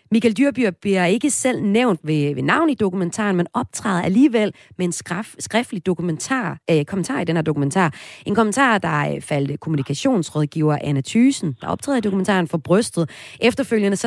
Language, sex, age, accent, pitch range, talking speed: Danish, female, 30-49, native, 155-210 Hz, 160 wpm